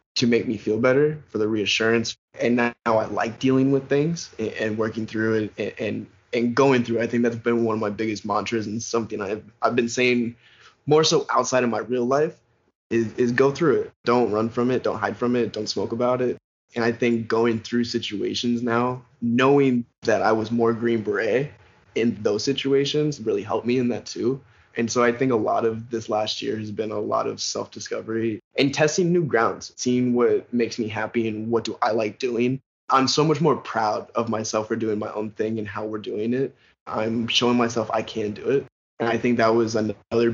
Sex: male